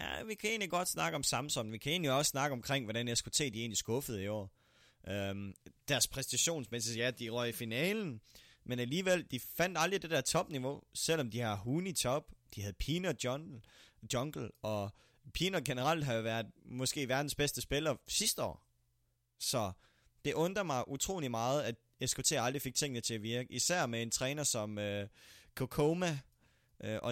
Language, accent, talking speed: Danish, native, 180 wpm